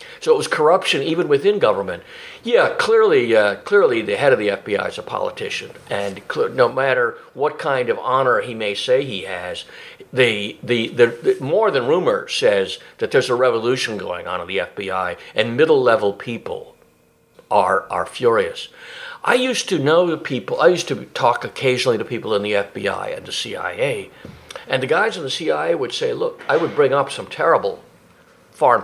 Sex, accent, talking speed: male, American, 185 wpm